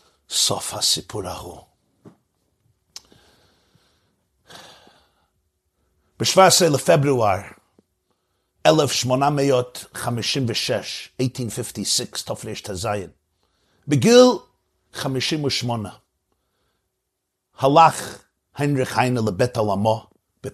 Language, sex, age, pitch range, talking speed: Hebrew, male, 50-69, 105-150 Hz, 50 wpm